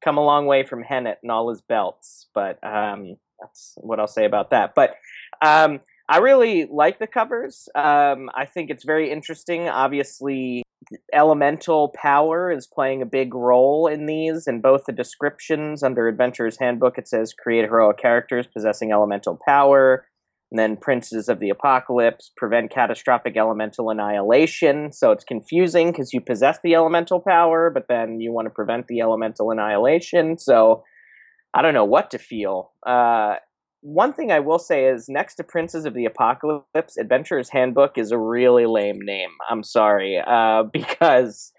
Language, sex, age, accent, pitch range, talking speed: English, male, 20-39, American, 115-155 Hz, 165 wpm